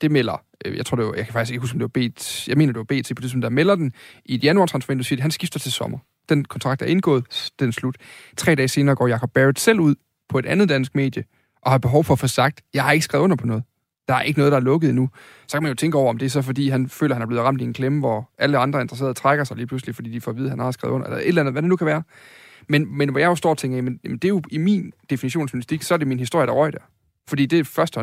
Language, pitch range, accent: Danish, 125-155 Hz, native